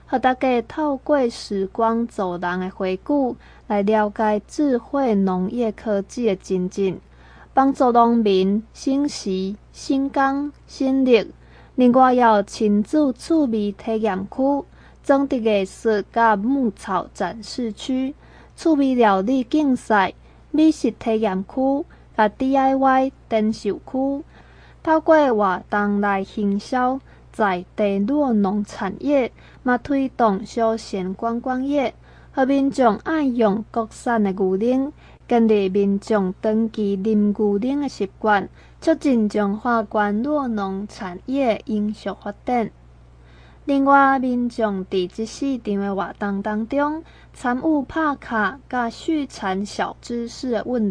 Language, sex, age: Chinese, female, 20-39